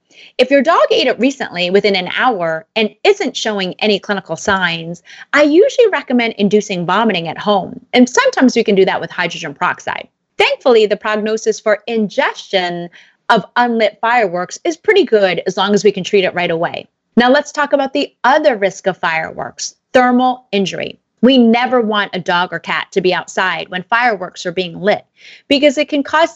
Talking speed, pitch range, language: 185 wpm, 185-250 Hz, English